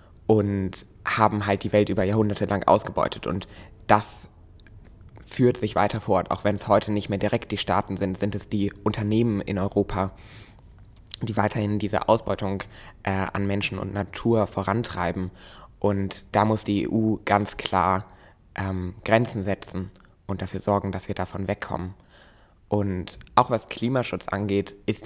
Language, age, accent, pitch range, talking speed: German, 20-39, German, 95-105 Hz, 155 wpm